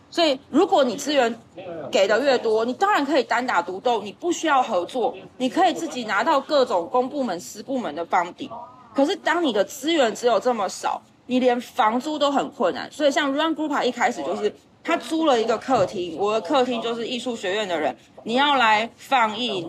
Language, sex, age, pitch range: Chinese, female, 30-49, 230-300 Hz